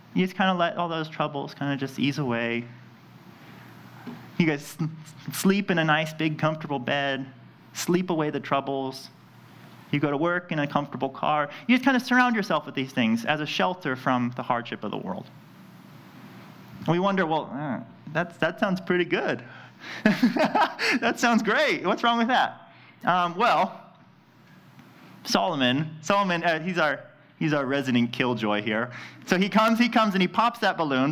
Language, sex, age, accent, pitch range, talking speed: English, male, 30-49, American, 140-195 Hz, 170 wpm